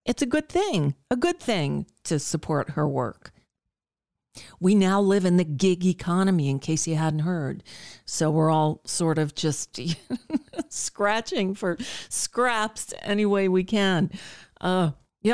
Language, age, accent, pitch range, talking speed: English, 40-59, American, 155-205 Hz, 160 wpm